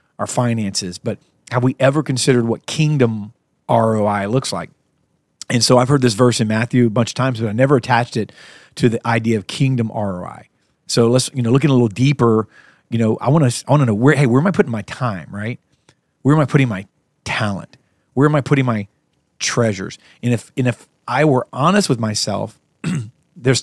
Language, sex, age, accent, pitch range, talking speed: English, male, 40-59, American, 115-135 Hz, 210 wpm